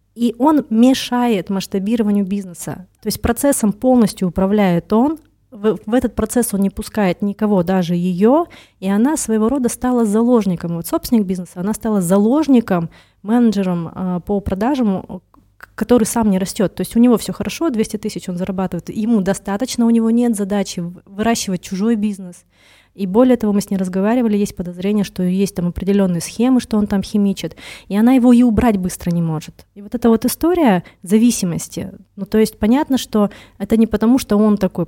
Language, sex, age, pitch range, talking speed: Russian, female, 20-39, 185-235 Hz, 175 wpm